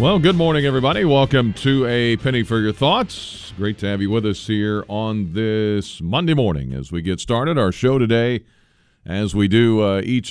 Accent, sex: American, male